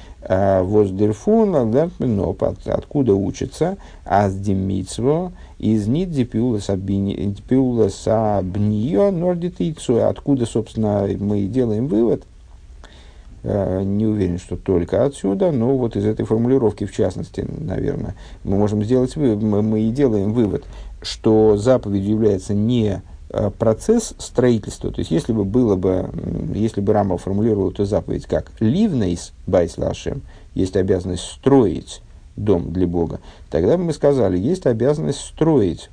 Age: 50-69